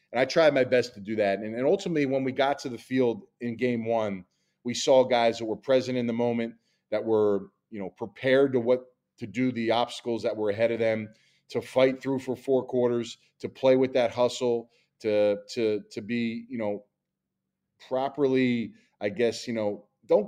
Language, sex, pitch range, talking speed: English, male, 110-130 Hz, 200 wpm